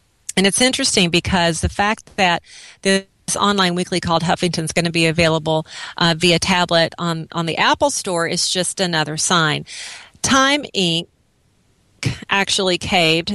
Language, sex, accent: English, female, American